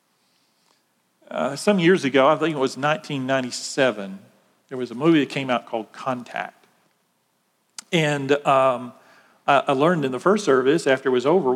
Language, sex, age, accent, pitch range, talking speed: English, male, 50-69, American, 130-160 Hz, 160 wpm